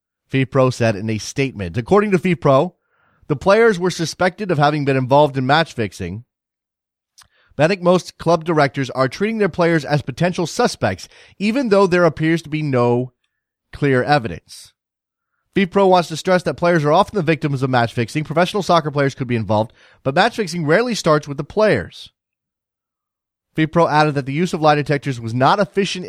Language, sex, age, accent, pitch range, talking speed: English, male, 30-49, American, 130-175 Hz, 185 wpm